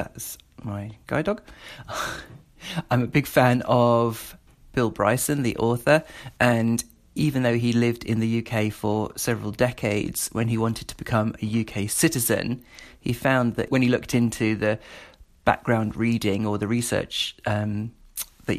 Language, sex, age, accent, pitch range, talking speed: English, male, 40-59, British, 110-125 Hz, 150 wpm